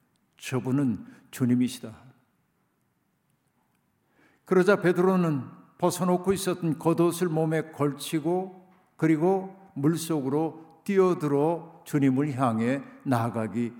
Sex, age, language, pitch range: male, 60-79, Korean, 135-165 Hz